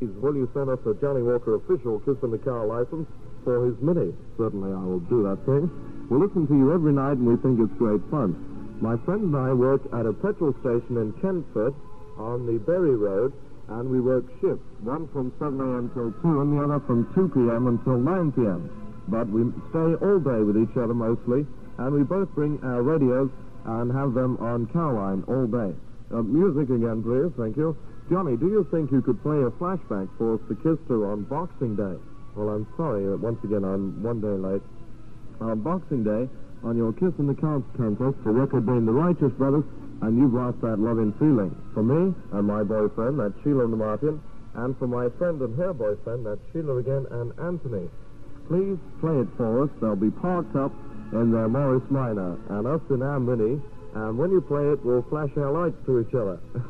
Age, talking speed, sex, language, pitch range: 60-79, 205 wpm, male, English, 115-145 Hz